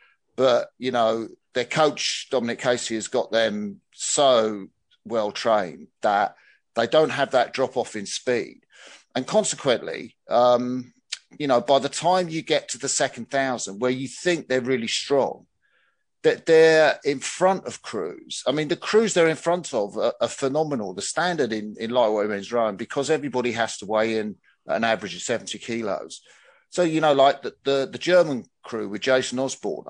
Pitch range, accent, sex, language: 115-155 Hz, British, male, English